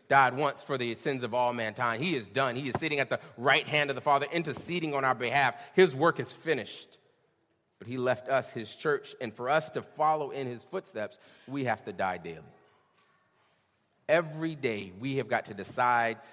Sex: male